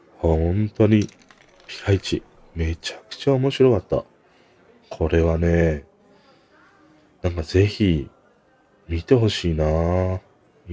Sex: male